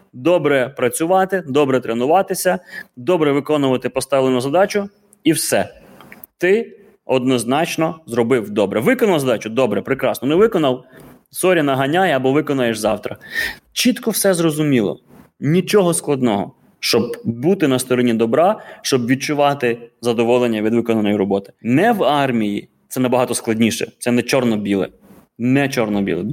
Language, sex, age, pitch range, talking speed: Ukrainian, male, 20-39, 120-165 Hz, 125 wpm